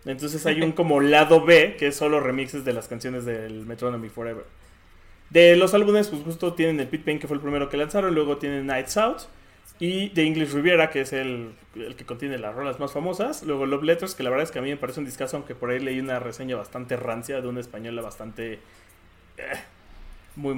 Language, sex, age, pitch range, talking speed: Spanish, male, 30-49, 120-155 Hz, 225 wpm